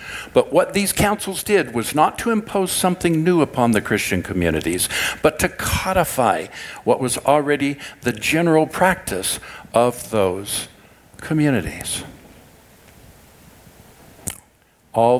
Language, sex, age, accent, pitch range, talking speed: English, male, 60-79, American, 105-150 Hz, 110 wpm